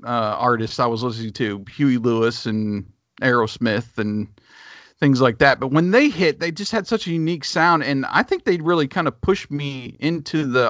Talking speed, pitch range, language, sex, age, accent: 200 wpm, 110-135 Hz, English, male, 40-59, American